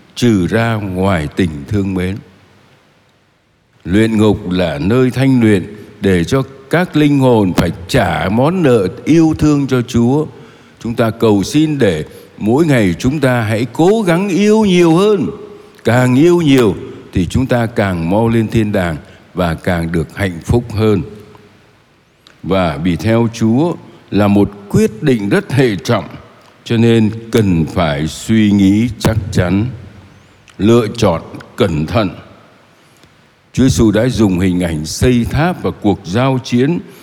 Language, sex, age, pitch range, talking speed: Vietnamese, male, 60-79, 100-130 Hz, 150 wpm